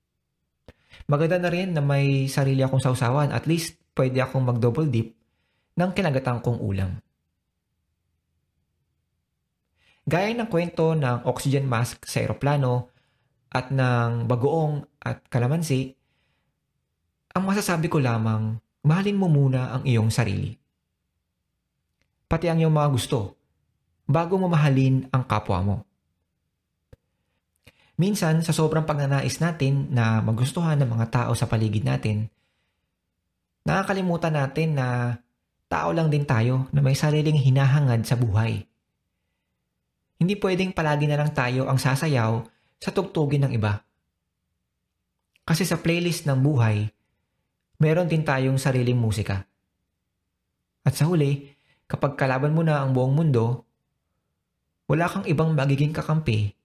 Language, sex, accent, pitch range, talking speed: Filipino, male, native, 105-150 Hz, 120 wpm